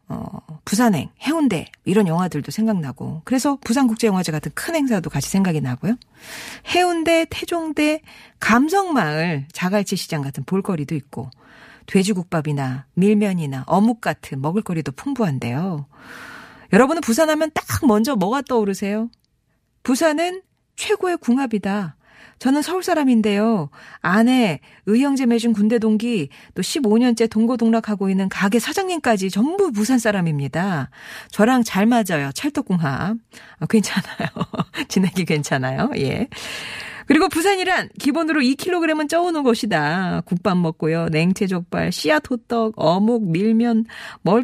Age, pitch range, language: 40-59, 175-265 Hz, Korean